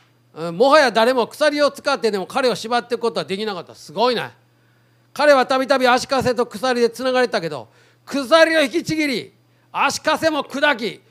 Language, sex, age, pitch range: Japanese, male, 40-59, 180-280 Hz